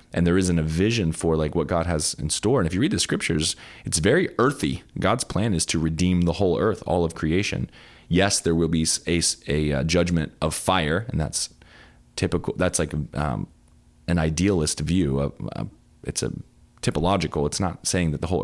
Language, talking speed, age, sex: English, 195 wpm, 20-39, male